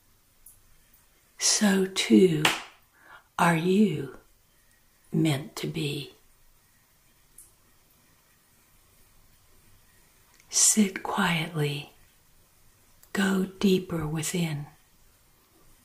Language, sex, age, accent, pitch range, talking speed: English, female, 60-79, American, 160-190 Hz, 45 wpm